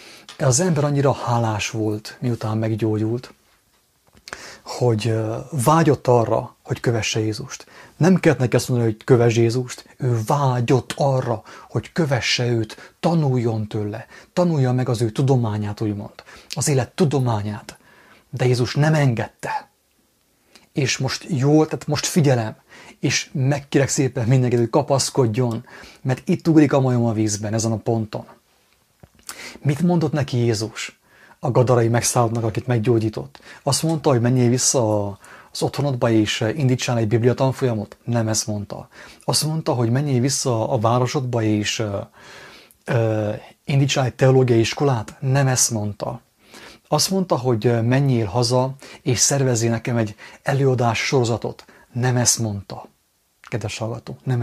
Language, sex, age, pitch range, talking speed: English, male, 30-49, 115-140 Hz, 130 wpm